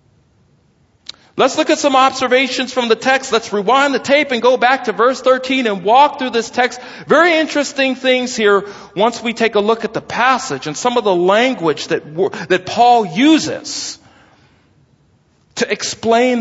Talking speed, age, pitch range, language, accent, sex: 170 wpm, 40-59, 205-270 Hz, English, American, male